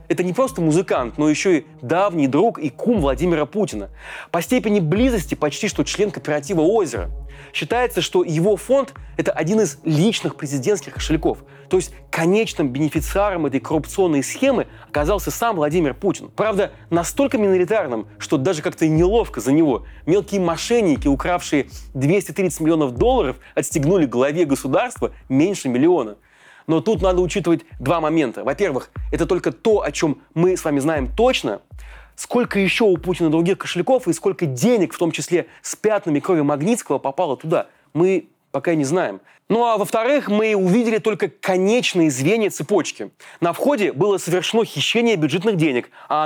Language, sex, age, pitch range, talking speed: Russian, male, 30-49, 150-205 Hz, 155 wpm